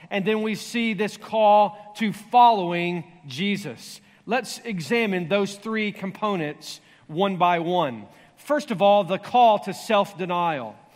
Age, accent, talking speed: 40-59, American, 130 wpm